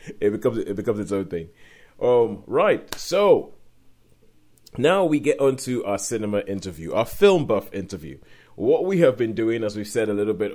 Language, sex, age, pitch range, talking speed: English, male, 30-49, 95-130 Hz, 190 wpm